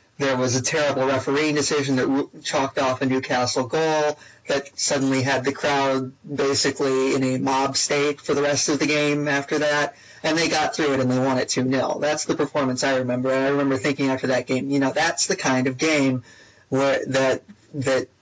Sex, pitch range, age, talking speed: male, 130-150 Hz, 30-49, 205 wpm